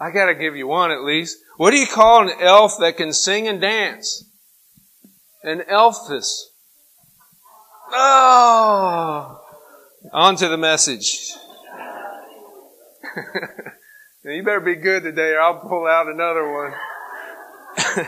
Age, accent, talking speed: 40-59, American, 125 wpm